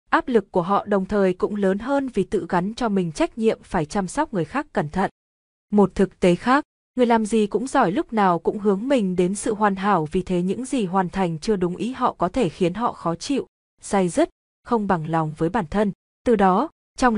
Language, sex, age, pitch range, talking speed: Vietnamese, female, 20-39, 180-235 Hz, 240 wpm